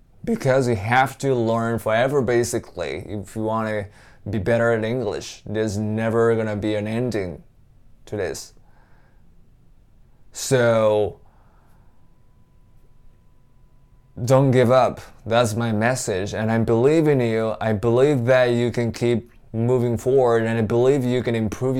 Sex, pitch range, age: male, 110-130 Hz, 20-39